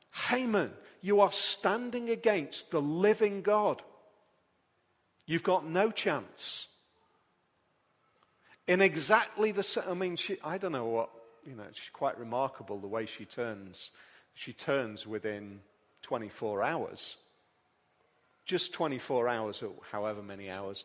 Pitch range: 110-180 Hz